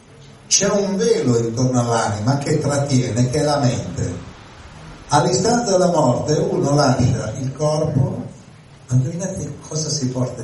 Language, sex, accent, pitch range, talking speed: Italian, male, native, 110-140 Hz, 130 wpm